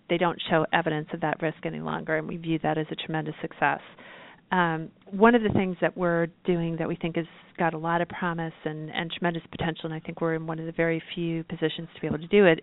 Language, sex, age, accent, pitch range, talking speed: English, female, 40-59, American, 160-175 Hz, 260 wpm